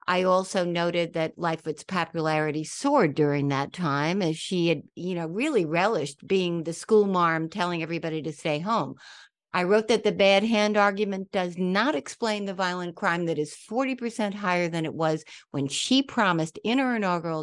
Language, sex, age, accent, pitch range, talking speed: English, female, 60-79, American, 150-190 Hz, 180 wpm